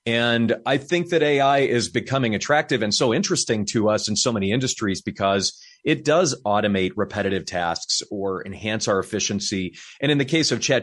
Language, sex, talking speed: English, male, 185 wpm